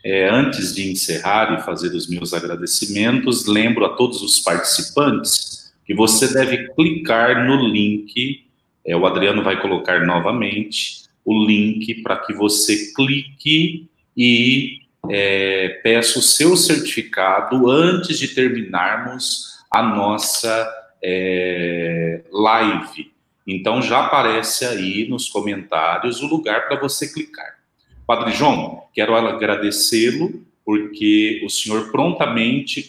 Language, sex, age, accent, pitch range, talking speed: Portuguese, male, 40-59, Brazilian, 110-140 Hz, 110 wpm